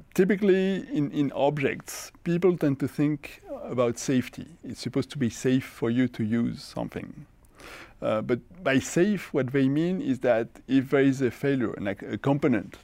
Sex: male